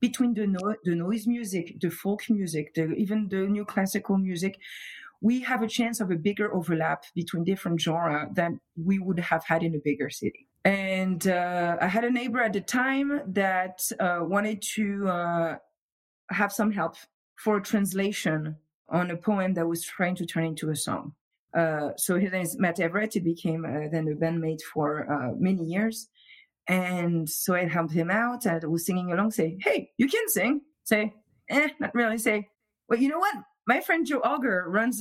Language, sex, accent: English, female, French